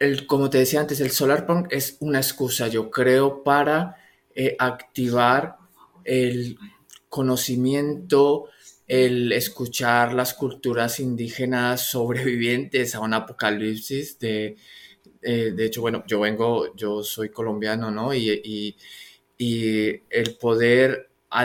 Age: 20-39